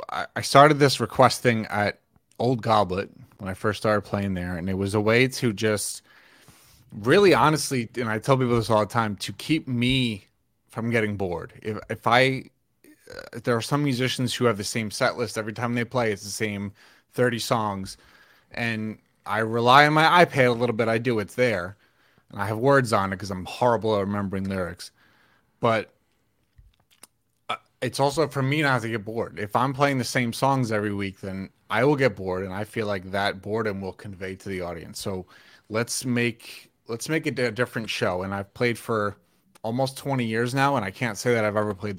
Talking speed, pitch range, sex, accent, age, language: 205 wpm, 105-125 Hz, male, American, 30-49, English